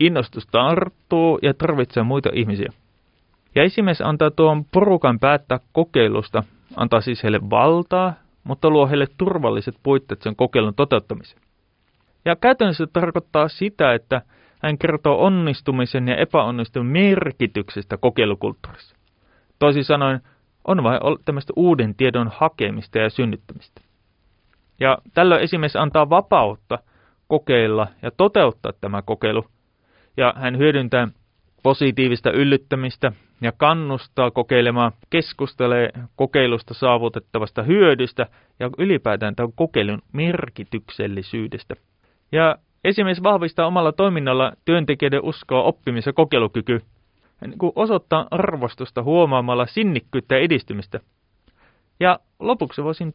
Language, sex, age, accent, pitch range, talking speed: Finnish, male, 30-49, native, 115-160 Hz, 105 wpm